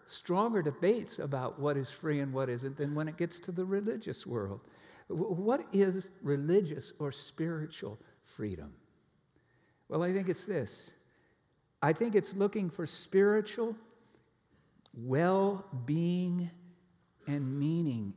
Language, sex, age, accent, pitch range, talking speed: English, male, 60-79, American, 140-185 Hz, 120 wpm